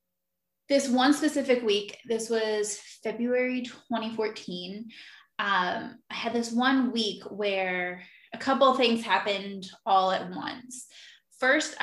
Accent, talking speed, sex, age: American, 120 wpm, female, 10-29